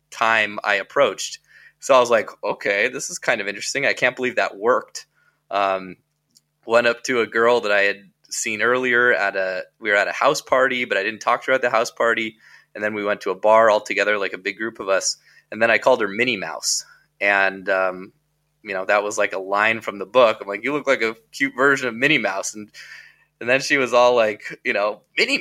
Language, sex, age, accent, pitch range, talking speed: English, male, 20-39, American, 110-140 Hz, 240 wpm